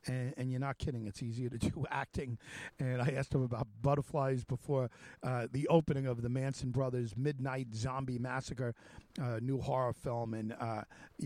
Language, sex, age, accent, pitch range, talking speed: English, male, 50-69, American, 120-145 Hz, 180 wpm